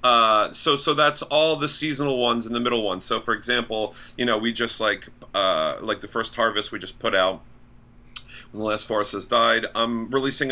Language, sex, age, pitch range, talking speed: English, male, 40-59, 105-125 Hz, 210 wpm